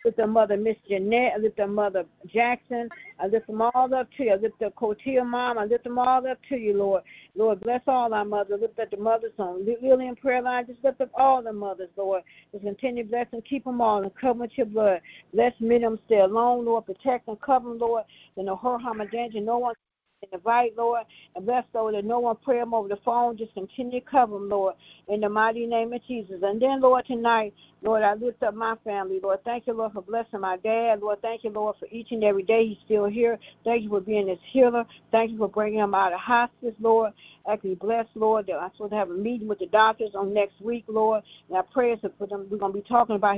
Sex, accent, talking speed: female, American, 255 wpm